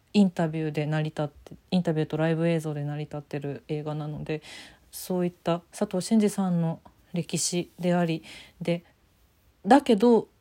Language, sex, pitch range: Japanese, female, 165-210 Hz